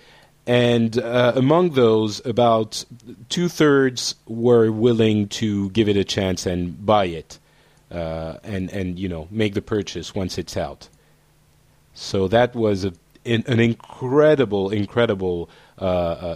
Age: 40-59